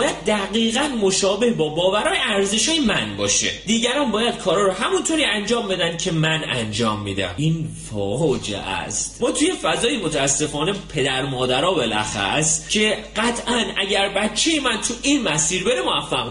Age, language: 30-49, Persian